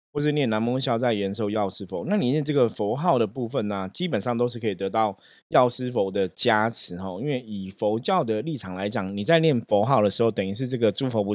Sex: male